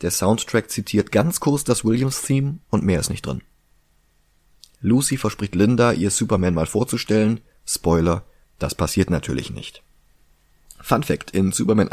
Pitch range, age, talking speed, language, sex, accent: 85-110 Hz, 30-49, 140 wpm, German, male, German